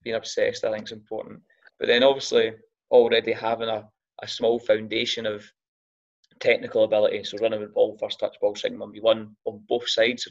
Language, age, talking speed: English, 20-39, 180 wpm